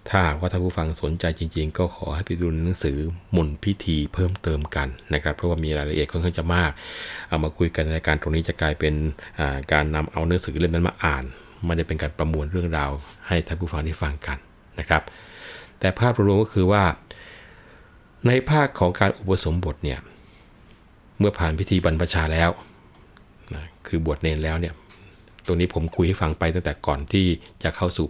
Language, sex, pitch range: Thai, male, 80-95 Hz